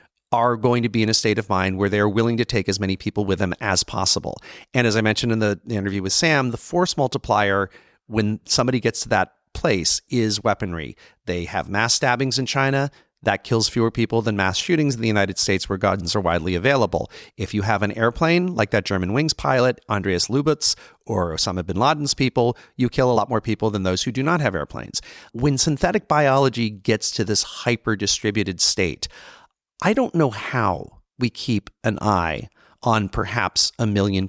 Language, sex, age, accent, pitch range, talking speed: English, male, 40-59, American, 100-135 Hz, 200 wpm